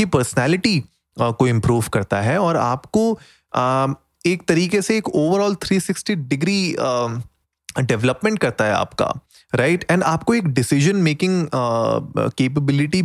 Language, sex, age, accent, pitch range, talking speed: Hindi, male, 20-39, native, 120-155 Hz, 135 wpm